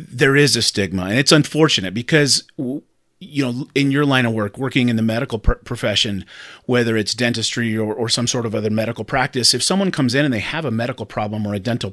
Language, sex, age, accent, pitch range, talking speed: English, male, 30-49, American, 110-130 Hz, 220 wpm